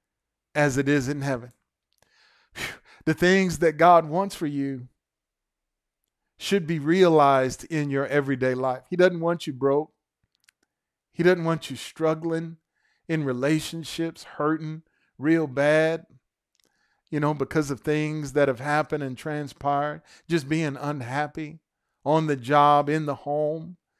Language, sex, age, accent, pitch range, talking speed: English, male, 40-59, American, 140-170 Hz, 135 wpm